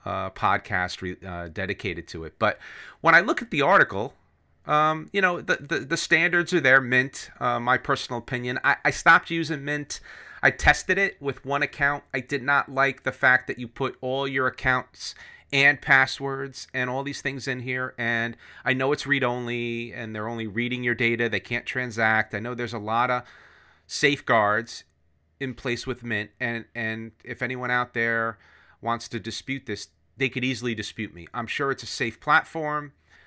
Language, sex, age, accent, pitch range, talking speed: English, male, 30-49, American, 110-135 Hz, 190 wpm